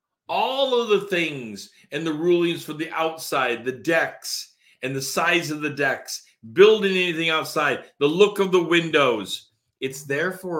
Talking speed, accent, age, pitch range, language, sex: 165 wpm, American, 50-69, 130-205 Hz, English, male